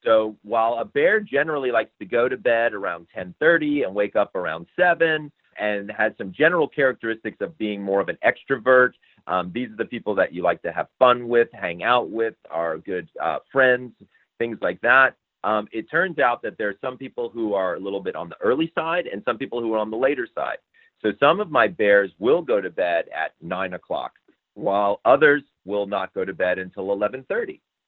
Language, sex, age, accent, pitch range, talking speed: English, male, 40-59, American, 100-140 Hz, 210 wpm